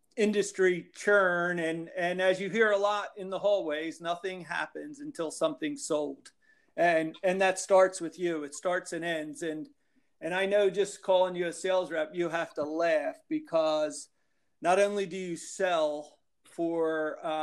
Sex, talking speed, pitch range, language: male, 170 wpm, 155-195 Hz, English